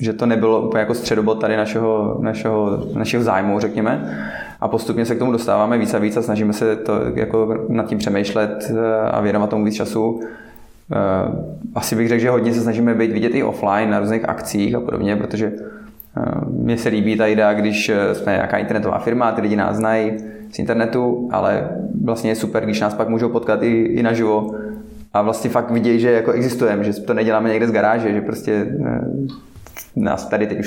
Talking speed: 190 wpm